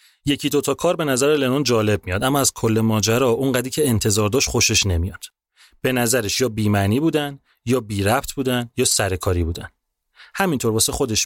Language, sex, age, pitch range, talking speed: Persian, male, 30-49, 110-145 Hz, 185 wpm